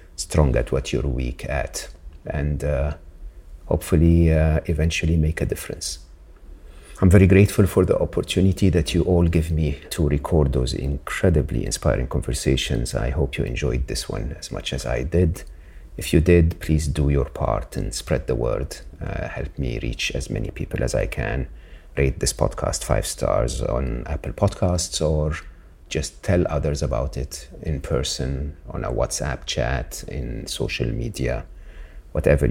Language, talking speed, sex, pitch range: English, 160 wpm, male, 70-85 Hz